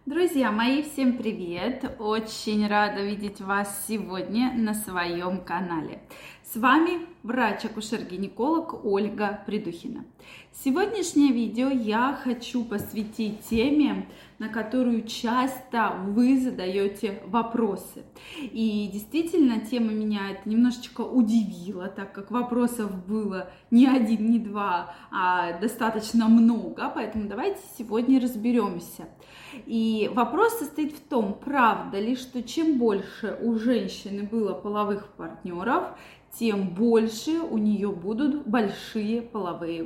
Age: 20-39